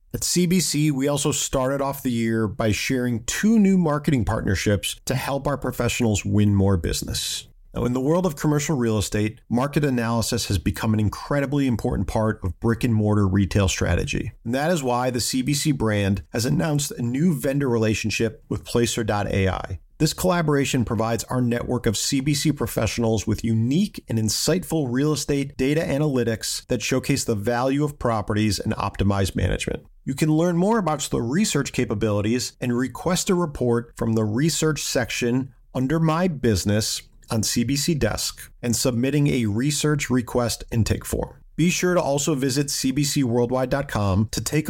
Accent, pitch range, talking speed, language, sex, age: American, 110-145 Hz, 160 wpm, English, male, 40-59